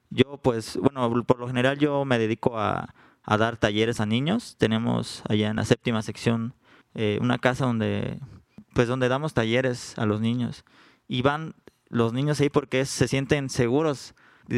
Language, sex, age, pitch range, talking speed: Spanish, male, 20-39, 115-140 Hz, 175 wpm